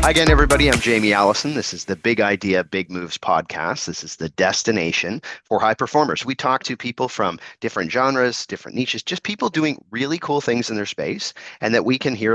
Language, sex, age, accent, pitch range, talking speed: English, male, 30-49, American, 95-135 Hz, 215 wpm